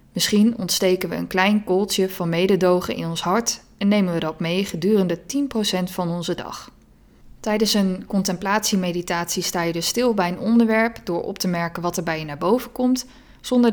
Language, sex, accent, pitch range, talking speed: Dutch, female, Dutch, 175-210 Hz, 190 wpm